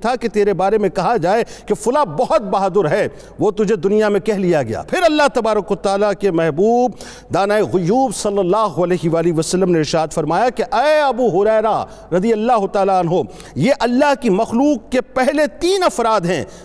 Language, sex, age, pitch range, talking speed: Urdu, male, 50-69, 185-245 Hz, 185 wpm